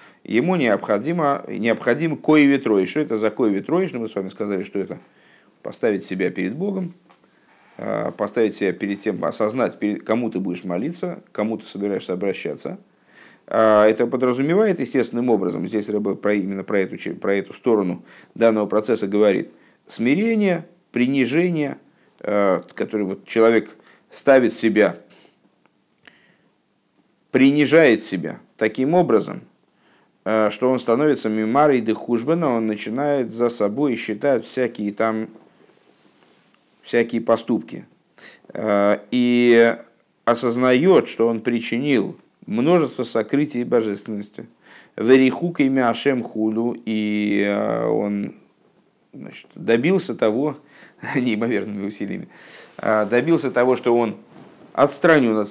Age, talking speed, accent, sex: 50-69, 105 wpm, native, male